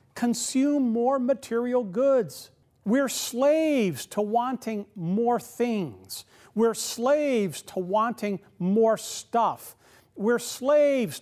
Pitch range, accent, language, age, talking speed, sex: 155-245 Hz, American, English, 50-69, 95 wpm, male